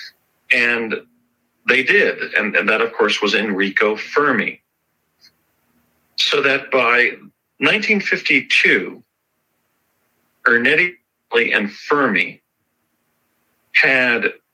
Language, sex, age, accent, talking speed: English, male, 40-59, American, 80 wpm